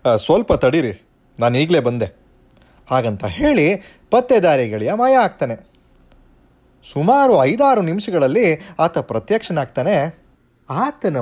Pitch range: 130-200 Hz